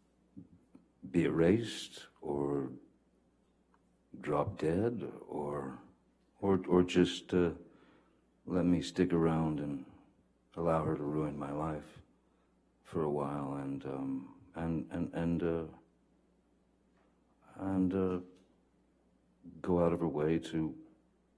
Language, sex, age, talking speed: English, male, 60-79, 105 wpm